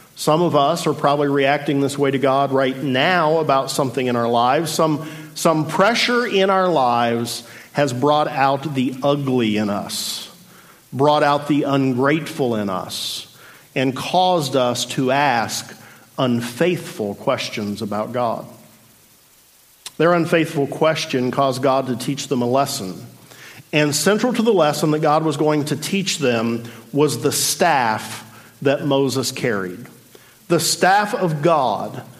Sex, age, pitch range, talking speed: male, 50-69, 135-185 Hz, 145 wpm